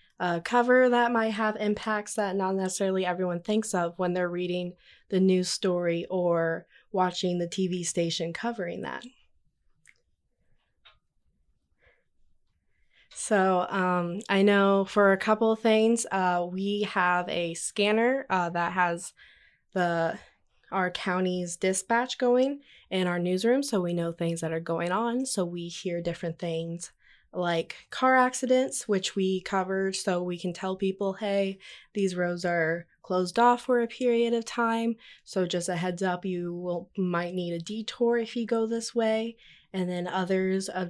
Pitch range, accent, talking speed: 175-220 Hz, American, 155 wpm